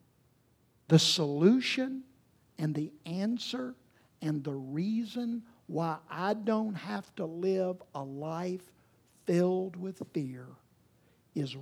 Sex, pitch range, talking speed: male, 150-205 Hz, 105 wpm